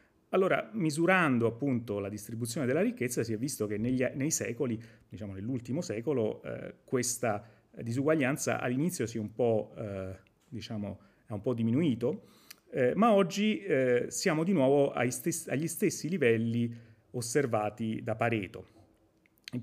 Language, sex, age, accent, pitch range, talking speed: Italian, male, 30-49, native, 105-135 Hz, 120 wpm